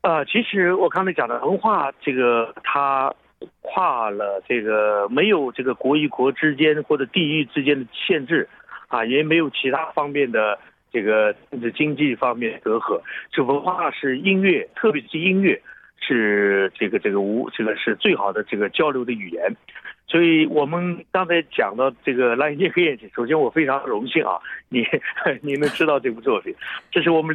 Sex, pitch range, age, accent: male, 125-175 Hz, 60-79, Chinese